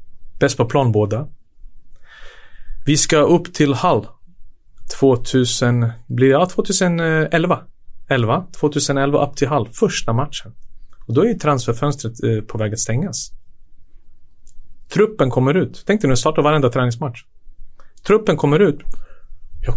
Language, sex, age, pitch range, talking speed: Swedish, male, 30-49, 110-140 Hz, 120 wpm